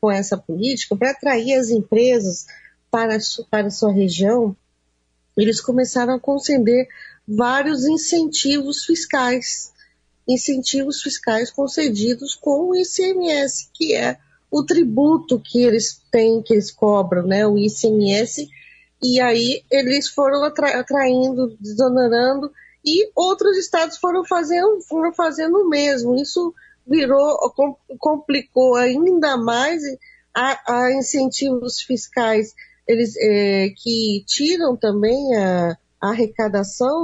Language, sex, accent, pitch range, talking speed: Portuguese, female, Brazilian, 215-285 Hz, 115 wpm